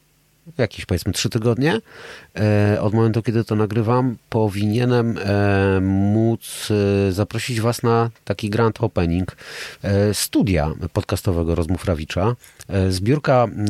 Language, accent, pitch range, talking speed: Polish, native, 90-115 Hz, 95 wpm